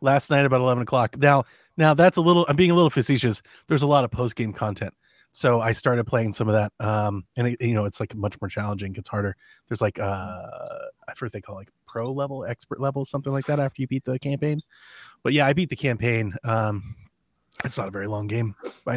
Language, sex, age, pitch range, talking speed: English, male, 30-49, 105-130 Hz, 245 wpm